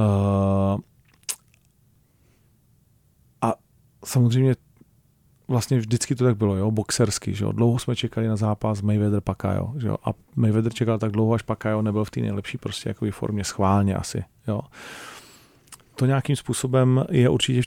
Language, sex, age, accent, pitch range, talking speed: Czech, male, 40-59, native, 110-120 Hz, 155 wpm